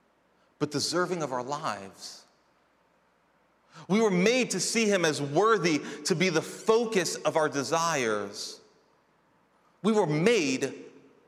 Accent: American